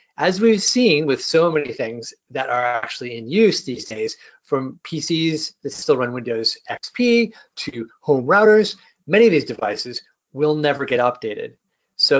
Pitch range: 140-225 Hz